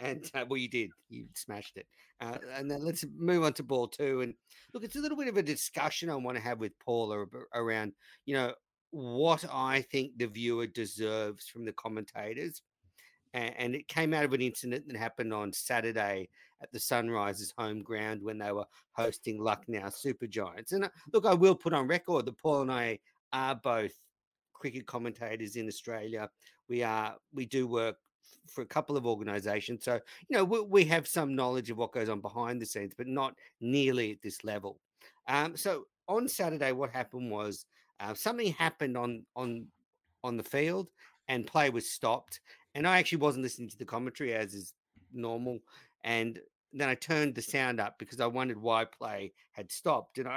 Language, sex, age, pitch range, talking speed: English, male, 50-69, 110-140 Hz, 195 wpm